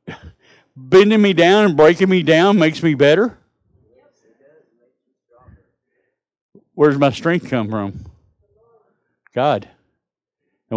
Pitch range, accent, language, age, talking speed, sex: 120-160 Hz, American, English, 50-69, 100 wpm, male